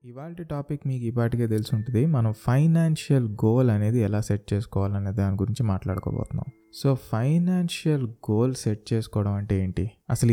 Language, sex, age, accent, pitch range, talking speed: Telugu, male, 20-39, native, 100-125 Hz, 135 wpm